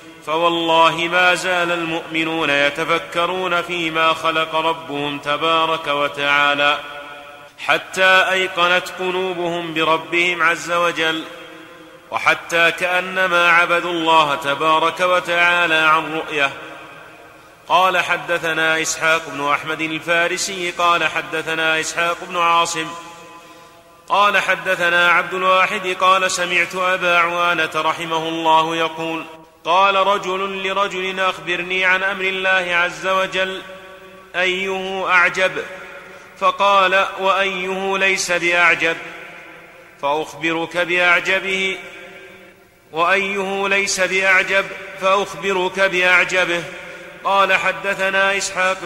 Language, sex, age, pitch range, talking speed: Arabic, male, 30-49, 160-185 Hz, 85 wpm